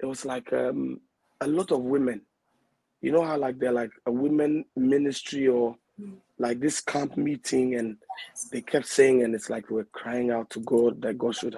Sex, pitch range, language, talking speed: male, 115-135 Hz, English, 190 wpm